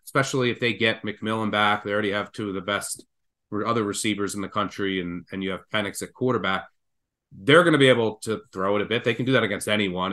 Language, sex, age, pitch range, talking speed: English, male, 30-49, 100-130 Hz, 245 wpm